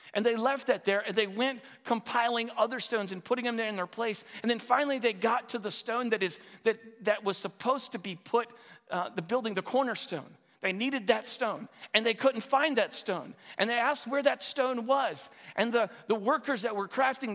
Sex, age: male, 40-59